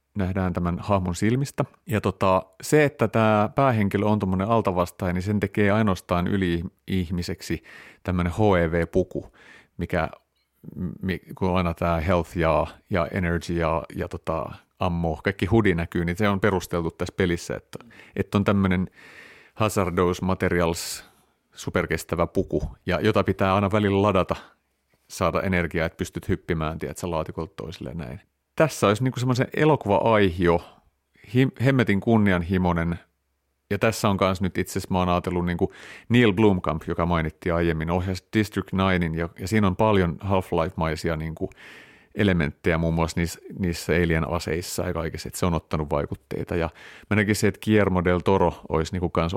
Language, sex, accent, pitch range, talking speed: Finnish, male, native, 85-100 Hz, 145 wpm